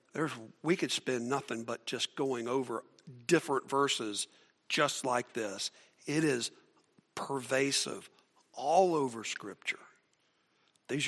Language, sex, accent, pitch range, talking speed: English, male, American, 130-160 Hz, 110 wpm